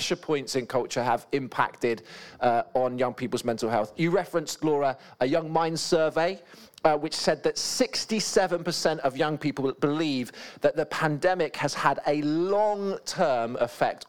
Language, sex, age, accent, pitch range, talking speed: English, male, 40-59, British, 125-160 Hz, 150 wpm